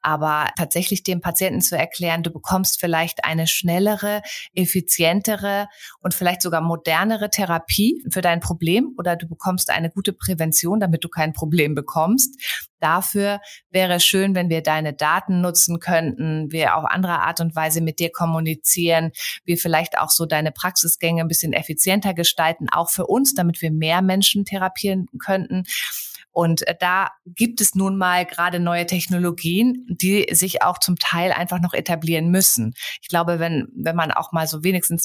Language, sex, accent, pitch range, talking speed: German, female, German, 160-185 Hz, 165 wpm